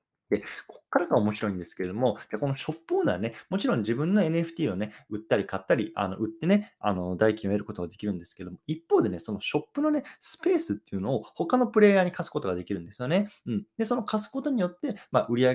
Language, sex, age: Japanese, male, 20-39